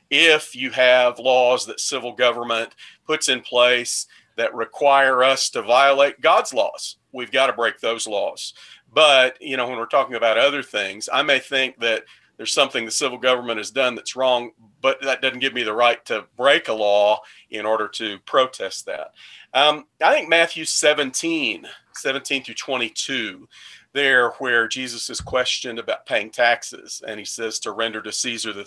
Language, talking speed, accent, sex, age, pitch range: English, 180 wpm, American, male, 40-59, 115-140 Hz